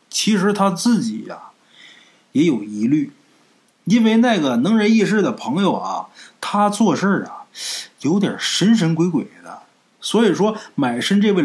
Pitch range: 155-240 Hz